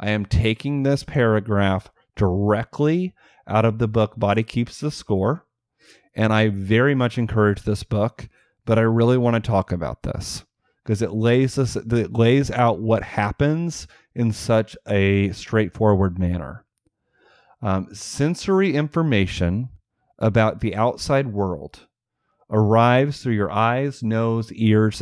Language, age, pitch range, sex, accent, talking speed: English, 30-49, 105-130 Hz, male, American, 135 wpm